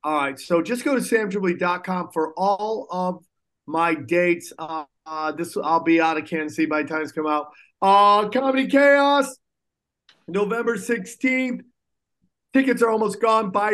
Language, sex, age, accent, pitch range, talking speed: English, male, 30-49, American, 175-245 Hz, 160 wpm